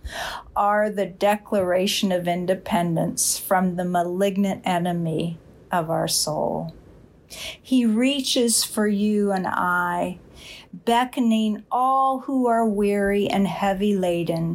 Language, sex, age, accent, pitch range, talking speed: English, female, 50-69, American, 180-225 Hz, 105 wpm